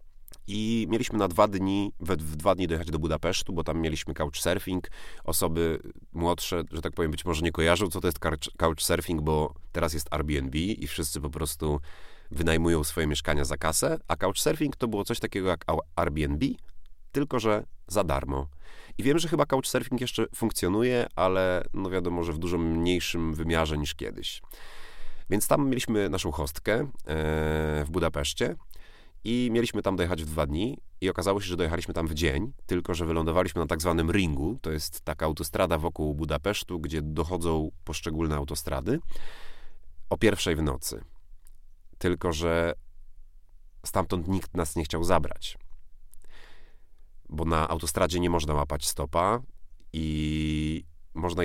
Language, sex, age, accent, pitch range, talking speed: Polish, male, 30-49, native, 75-90 Hz, 150 wpm